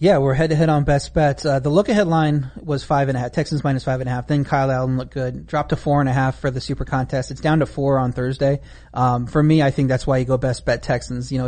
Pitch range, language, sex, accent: 125-145 Hz, English, male, American